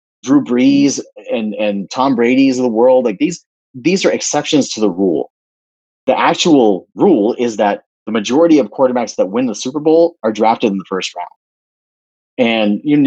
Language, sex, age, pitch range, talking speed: English, male, 30-49, 105-150 Hz, 180 wpm